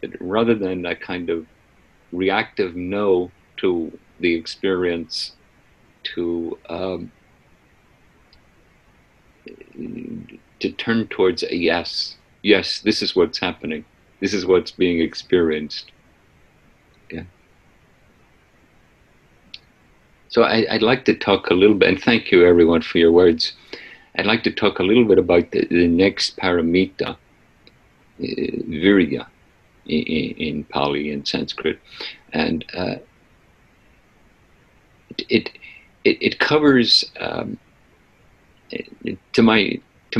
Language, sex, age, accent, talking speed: English, male, 50-69, American, 110 wpm